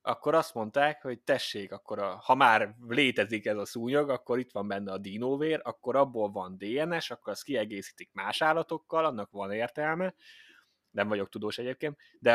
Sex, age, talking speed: male, 20-39, 165 wpm